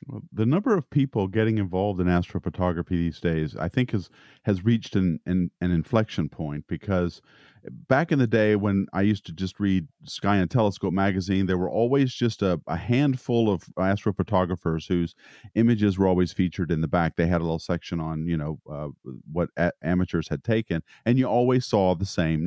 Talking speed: 195 wpm